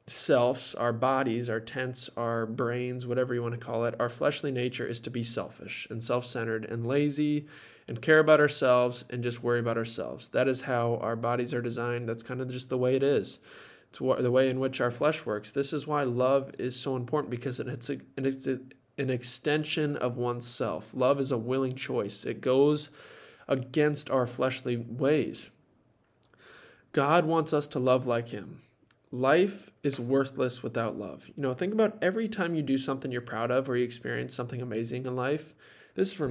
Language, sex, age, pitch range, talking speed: English, male, 20-39, 120-150 Hz, 190 wpm